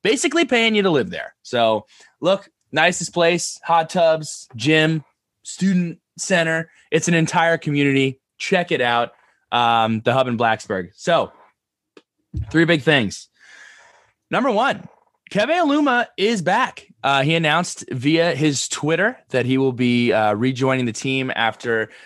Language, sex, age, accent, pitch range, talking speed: English, male, 20-39, American, 110-155 Hz, 140 wpm